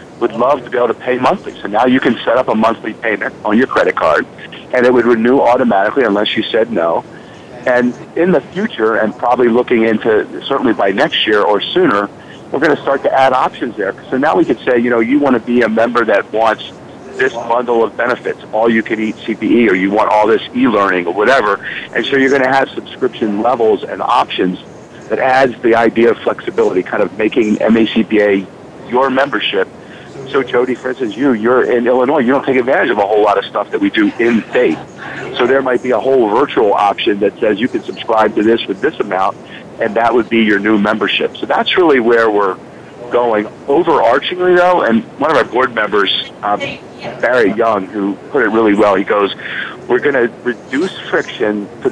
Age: 50-69